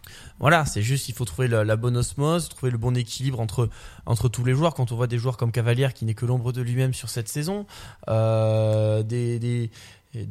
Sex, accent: male, French